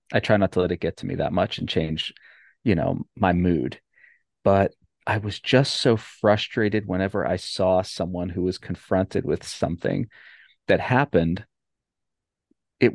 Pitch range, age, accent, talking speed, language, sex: 95-125 Hz, 30-49, American, 160 wpm, English, male